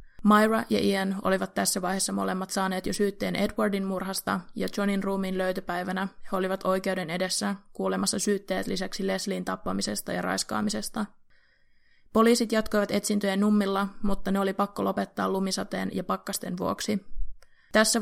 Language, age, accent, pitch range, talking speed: Finnish, 20-39, native, 185-205 Hz, 135 wpm